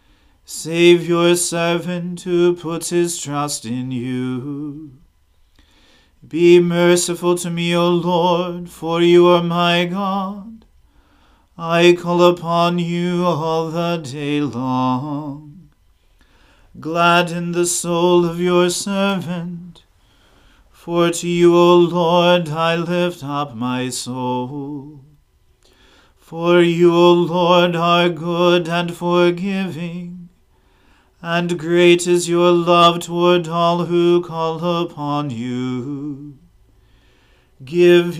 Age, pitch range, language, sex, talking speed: 40-59, 145-175 Hz, English, male, 100 wpm